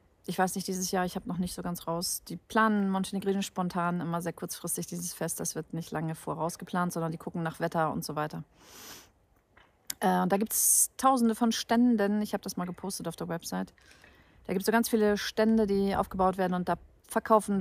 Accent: German